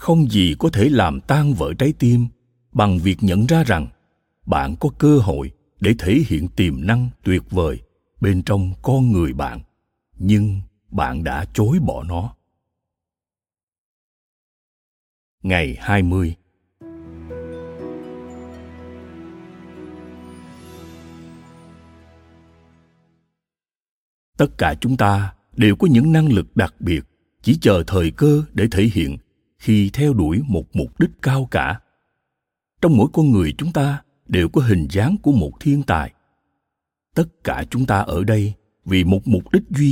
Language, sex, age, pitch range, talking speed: Vietnamese, male, 60-79, 80-120 Hz, 135 wpm